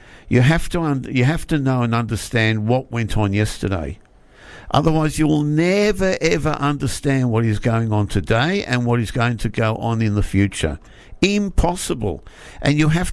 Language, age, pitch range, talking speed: English, 60-79, 105-135 Hz, 175 wpm